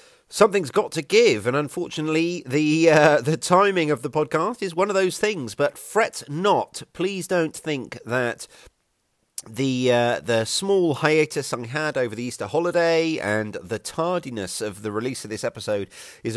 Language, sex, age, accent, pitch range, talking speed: English, male, 40-59, British, 115-155 Hz, 170 wpm